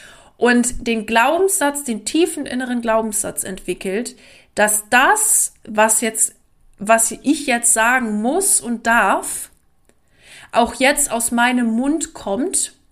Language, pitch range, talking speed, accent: German, 195-235 Hz, 115 wpm, German